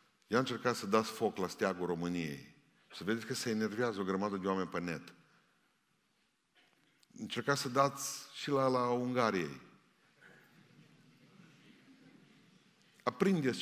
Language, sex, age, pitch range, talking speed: Romanian, male, 50-69, 95-125 Hz, 120 wpm